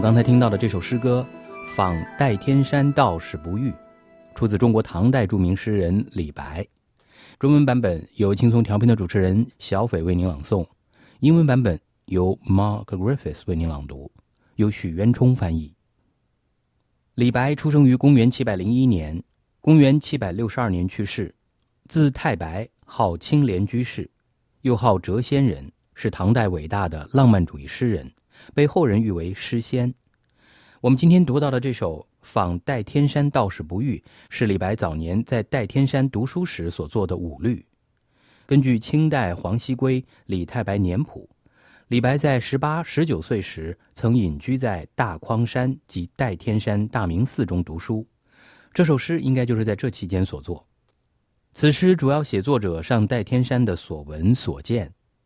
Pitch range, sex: 95-130 Hz, male